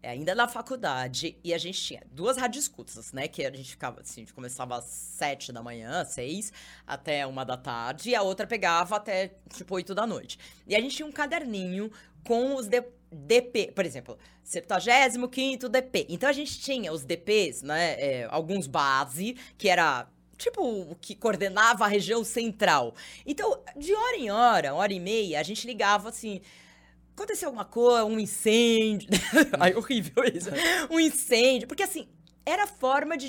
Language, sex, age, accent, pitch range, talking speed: Portuguese, female, 20-39, Brazilian, 175-270 Hz, 175 wpm